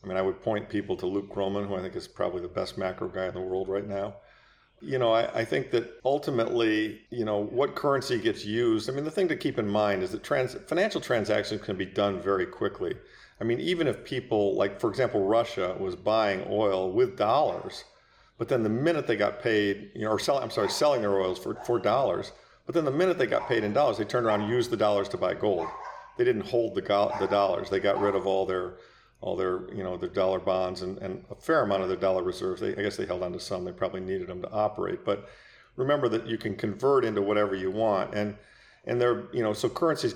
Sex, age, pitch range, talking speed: male, 50-69, 95-120 Hz, 250 wpm